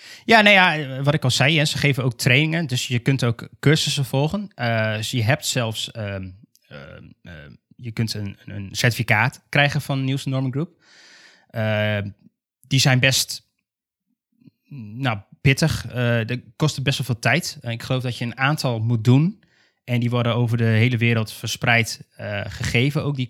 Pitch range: 110-135 Hz